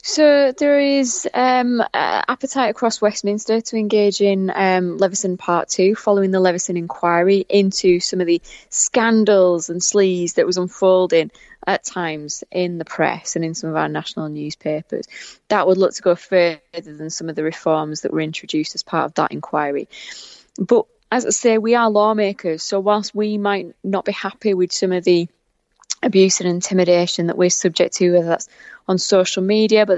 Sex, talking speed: female, 180 wpm